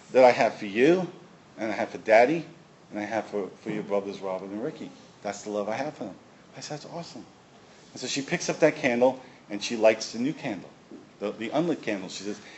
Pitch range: 120-165 Hz